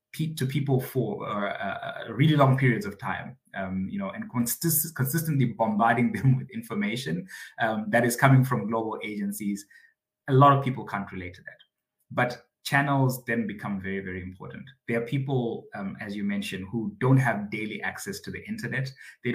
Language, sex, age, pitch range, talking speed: English, male, 20-39, 100-135 Hz, 175 wpm